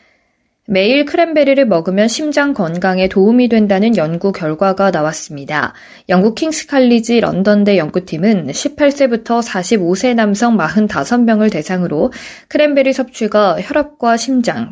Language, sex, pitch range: Korean, female, 190-260 Hz